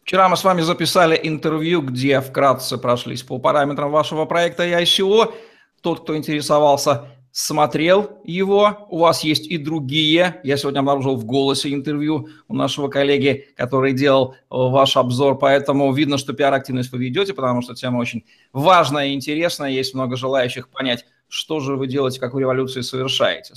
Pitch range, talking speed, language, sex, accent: 130-165 Hz, 160 wpm, Russian, male, native